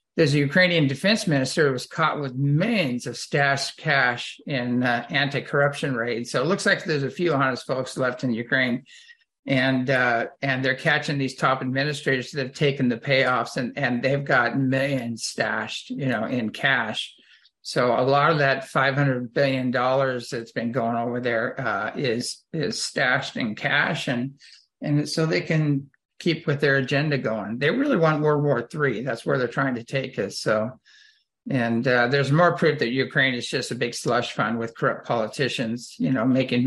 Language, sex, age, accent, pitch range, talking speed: English, male, 50-69, American, 125-145 Hz, 190 wpm